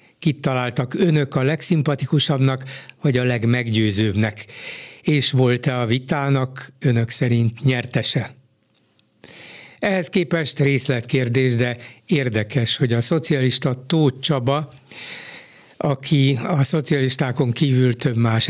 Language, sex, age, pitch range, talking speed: Hungarian, male, 60-79, 120-145 Hz, 100 wpm